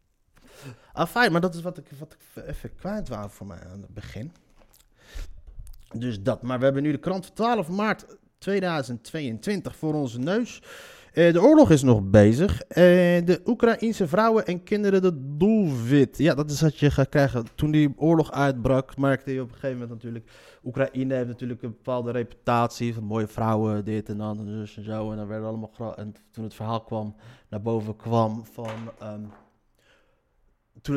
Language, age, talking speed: Dutch, 30-49, 180 wpm